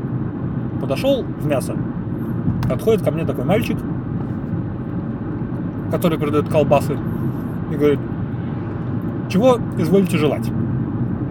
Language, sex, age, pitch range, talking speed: Russian, male, 20-39, 130-175 Hz, 85 wpm